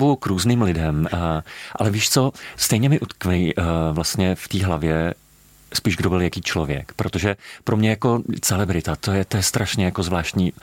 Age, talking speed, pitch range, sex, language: 40-59, 170 wpm, 80-100 Hz, male, Slovak